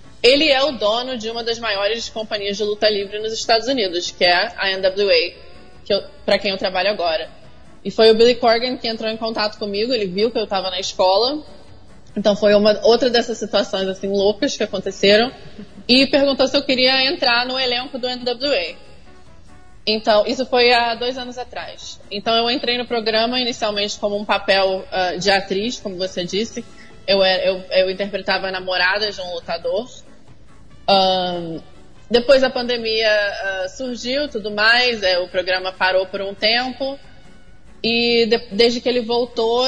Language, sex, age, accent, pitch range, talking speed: Portuguese, female, 20-39, Brazilian, 200-235 Hz, 175 wpm